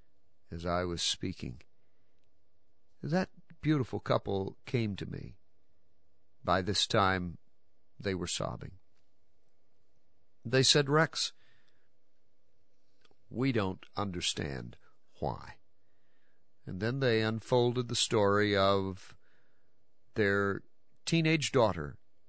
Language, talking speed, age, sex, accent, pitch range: English, 90 wpm, 50-69, male, American, 90-115 Hz